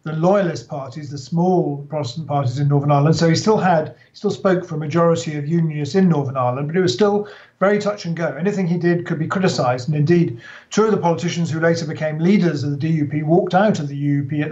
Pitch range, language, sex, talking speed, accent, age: 150-175 Hz, English, male, 240 wpm, British, 40-59